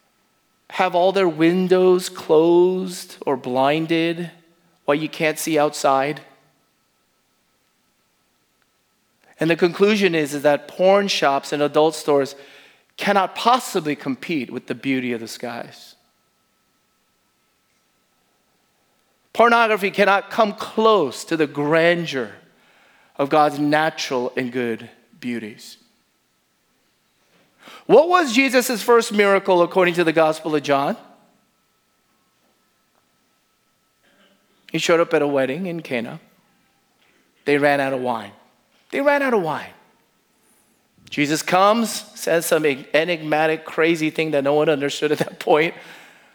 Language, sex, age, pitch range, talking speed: English, male, 30-49, 145-195 Hz, 115 wpm